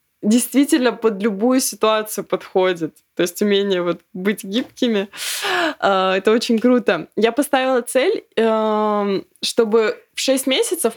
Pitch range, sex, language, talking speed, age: 210-250 Hz, female, Russian, 115 wpm, 20-39